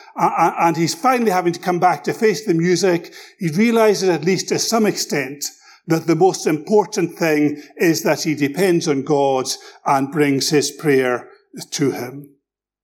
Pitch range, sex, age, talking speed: 150-215 Hz, male, 50-69, 165 wpm